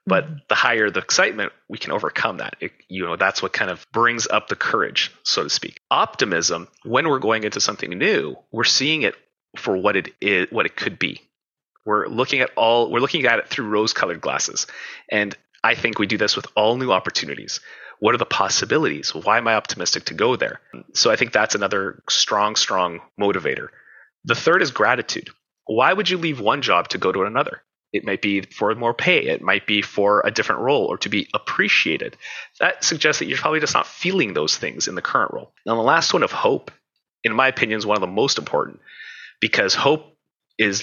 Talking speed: 210 wpm